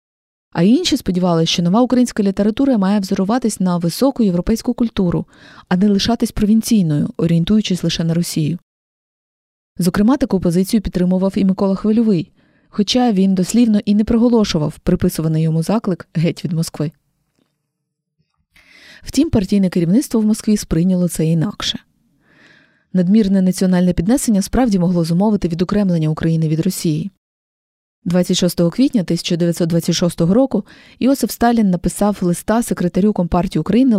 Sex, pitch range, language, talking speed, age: female, 175-215 Hz, Ukrainian, 120 wpm, 20-39